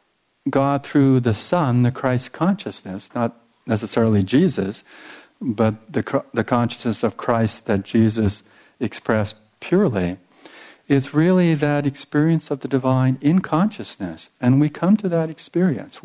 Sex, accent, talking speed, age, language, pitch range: male, American, 130 wpm, 50-69, English, 115-145 Hz